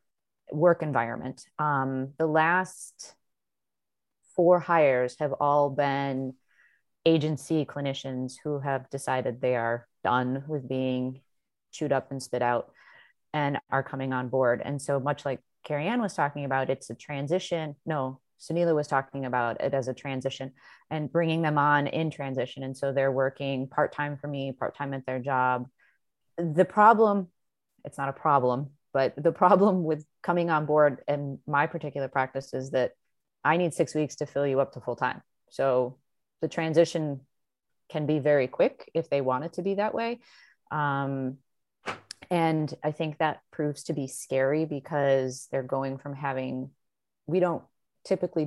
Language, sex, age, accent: English, female, 30-49, American